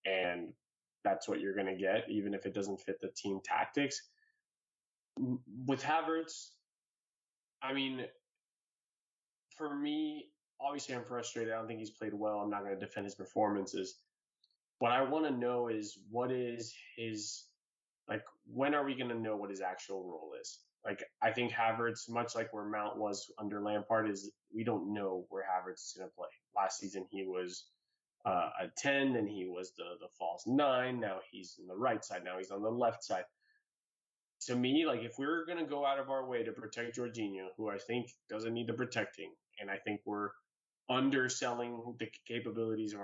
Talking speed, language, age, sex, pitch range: 190 wpm, English, 20-39, male, 100-125 Hz